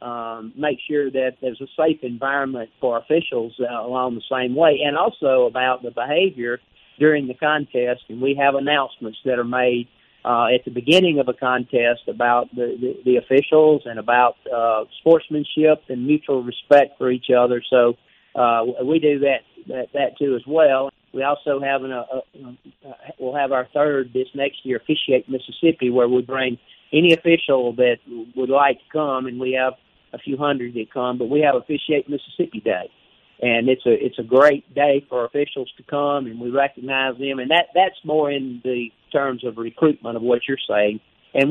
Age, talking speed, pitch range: 50-69, 190 wpm, 125-145 Hz